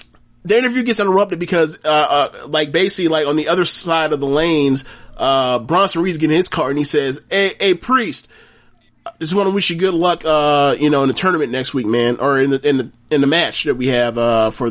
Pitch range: 125-170 Hz